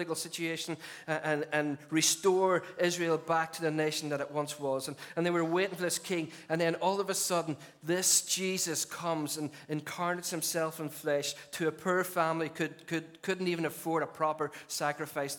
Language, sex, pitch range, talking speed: English, male, 145-175 Hz, 185 wpm